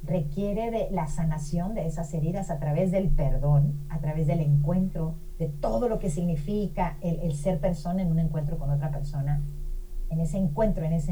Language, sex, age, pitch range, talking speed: Spanish, female, 40-59, 155-195 Hz, 190 wpm